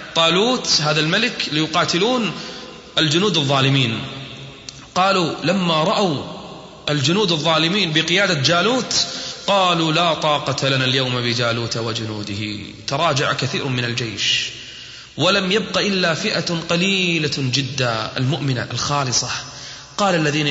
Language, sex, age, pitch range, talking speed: Arabic, male, 30-49, 125-170 Hz, 100 wpm